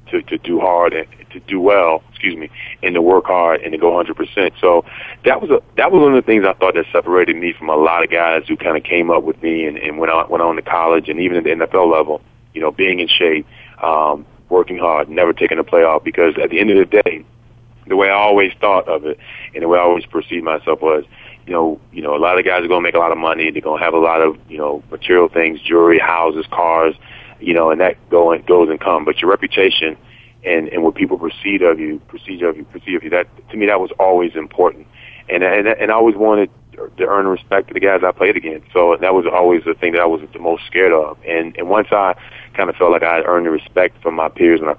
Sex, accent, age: male, American, 30-49